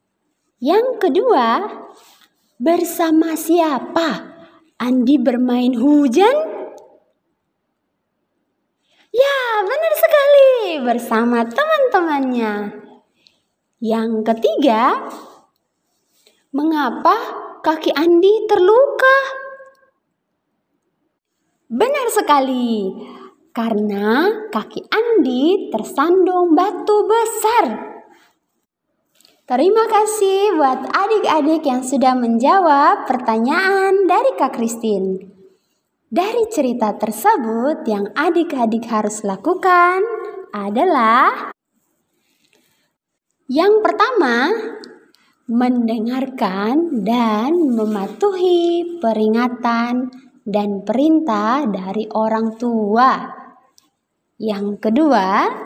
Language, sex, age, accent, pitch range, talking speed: Indonesian, female, 20-39, native, 235-360 Hz, 65 wpm